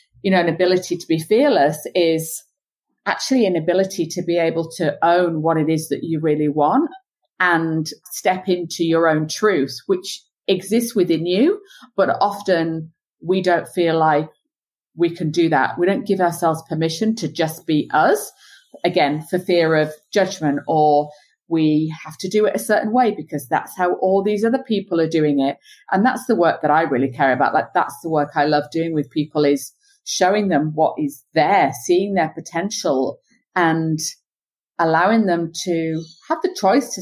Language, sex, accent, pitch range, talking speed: English, female, British, 155-195 Hz, 180 wpm